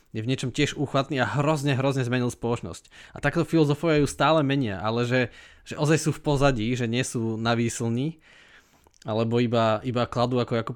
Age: 20-39